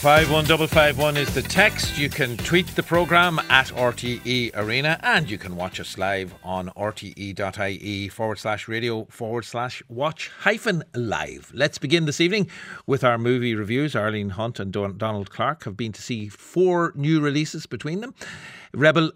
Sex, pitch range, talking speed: male, 100-145 Hz, 165 wpm